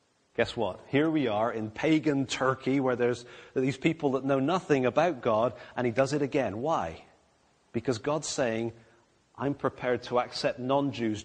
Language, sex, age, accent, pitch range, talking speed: English, male, 30-49, British, 120-165 Hz, 165 wpm